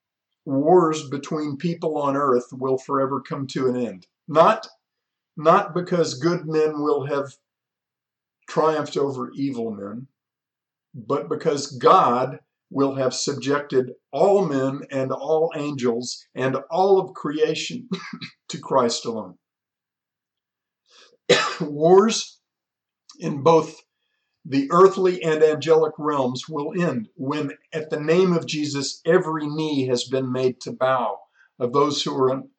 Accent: American